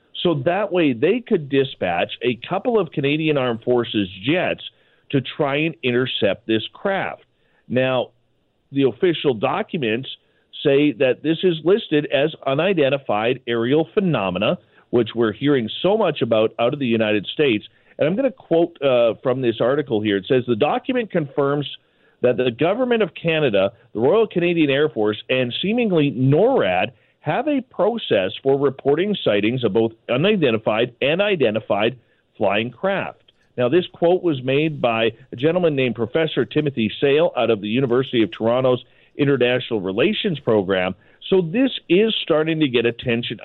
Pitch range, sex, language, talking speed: 120-165 Hz, male, English, 155 wpm